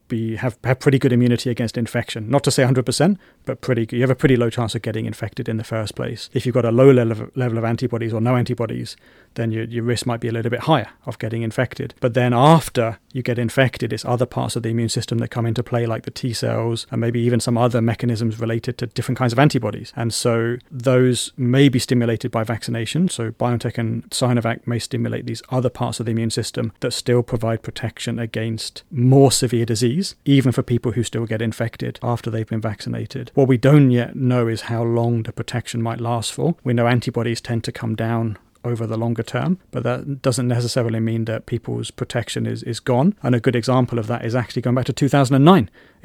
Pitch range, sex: 115-130 Hz, male